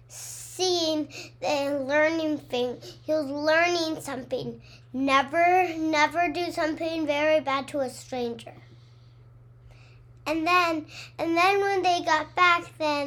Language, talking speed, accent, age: English, 115 wpm, American, 10-29